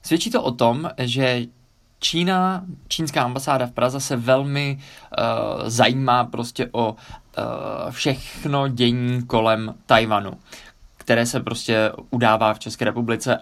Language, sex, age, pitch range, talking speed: Czech, male, 20-39, 115-140 Hz, 125 wpm